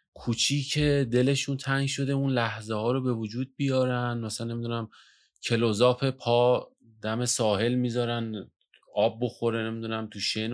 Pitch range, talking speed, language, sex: 100-130 Hz, 130 wpm, Persian, male